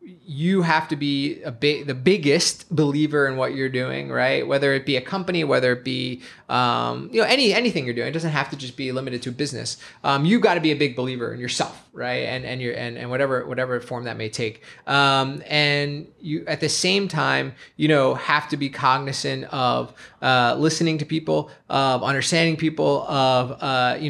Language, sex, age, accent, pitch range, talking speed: English, male, 20-39, American, 130-155 Hz, 210 wpm